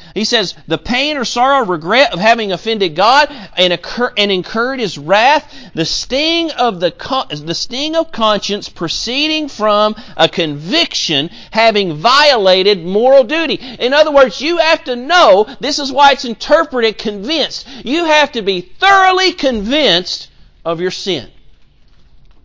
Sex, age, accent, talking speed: male, 40-59, American, 145 wpm